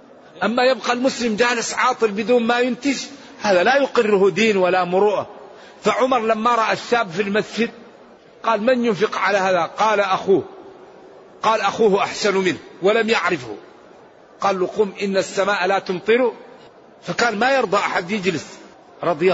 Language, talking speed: Arabic, 145 wpm